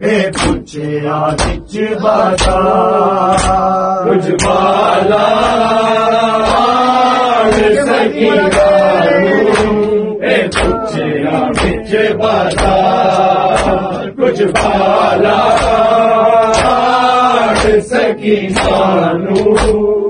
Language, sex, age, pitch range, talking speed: Urdu, male, 40-59, 210-295 Hz, 35 wpm